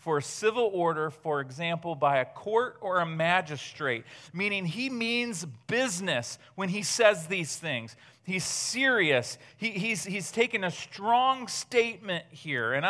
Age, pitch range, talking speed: 40-59, 150-230 Hz, 140 wpm